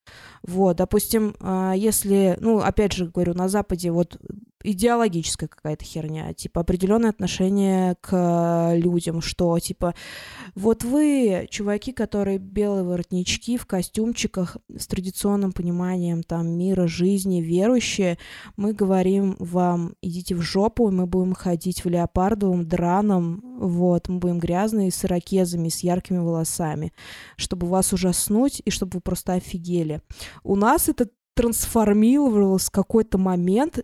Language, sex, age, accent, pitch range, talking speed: Russian, female, 20-39, native, 180-210 Hz, 125 wpm